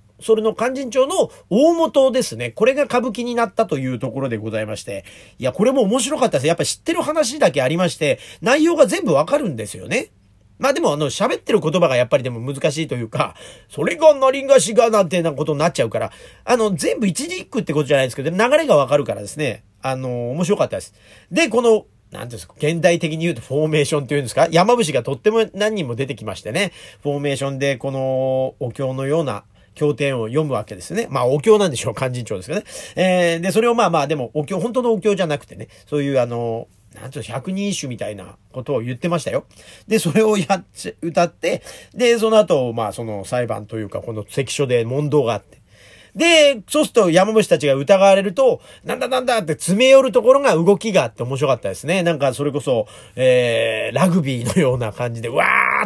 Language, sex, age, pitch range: Japanese, male, 40-59, 130-220 Hz